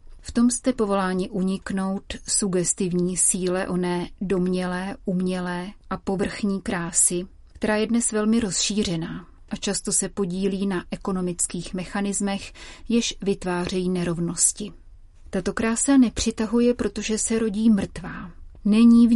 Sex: female